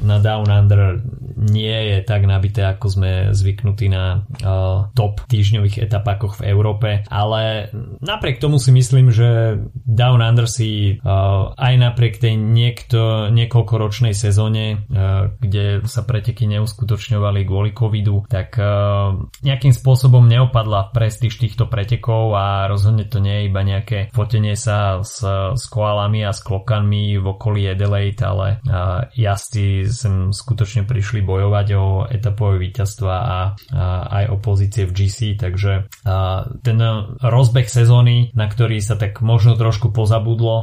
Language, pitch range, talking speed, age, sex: Slovak, 100-115 Hz, 135 wpm, 20-39, male